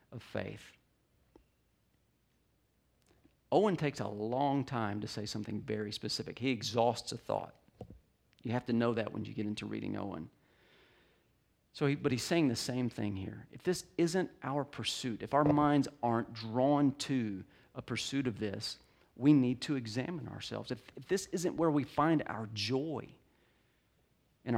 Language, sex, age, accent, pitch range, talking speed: English, male, 40-59, American, 110-140 Hz, 155 wpm